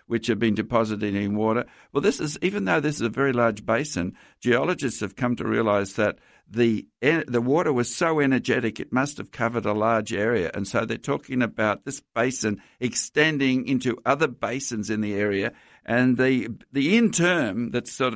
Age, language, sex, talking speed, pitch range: 60-79, English, male, 190 wpm, 115-140 Hz